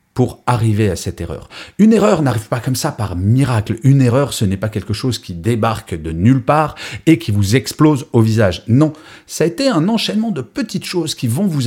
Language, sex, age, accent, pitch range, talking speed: French, male, 40-59, French, 95-130 Hz, 220 wpm